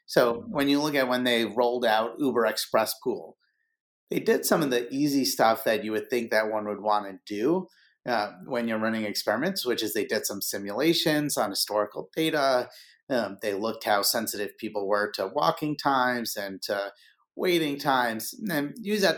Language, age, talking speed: English, 30-49, 190 wpm